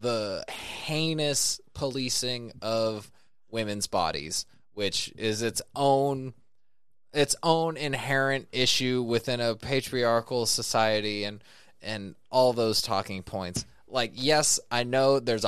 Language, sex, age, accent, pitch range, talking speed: English, male, 20-39, American, 105-140 Hz, 110 wpm